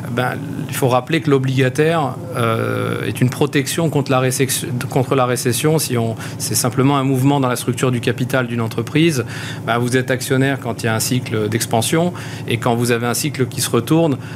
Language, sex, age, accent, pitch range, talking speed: French, male, 40-59, French, 125-145 Hz, 205 wpm